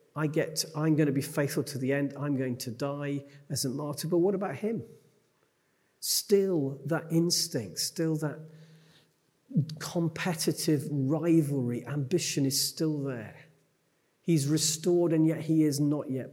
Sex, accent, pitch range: male, British, 125-155 Hz